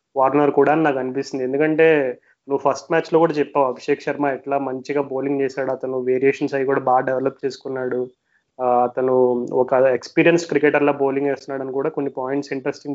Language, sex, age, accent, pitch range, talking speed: Telugu, male, 30-49, native, 135-155 Hz, 170 wpm